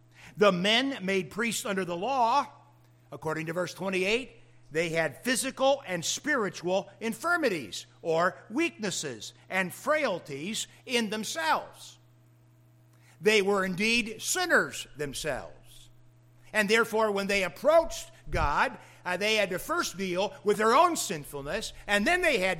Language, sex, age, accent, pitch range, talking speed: English, male, 60-79, American, 145-220 Hz, 125 wpm